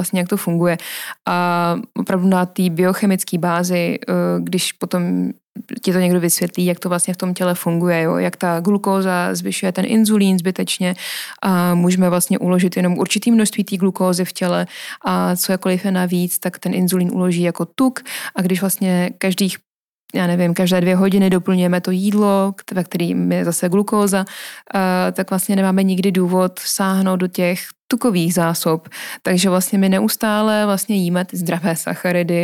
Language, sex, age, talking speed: Czech, female, 20-39, 165 wpm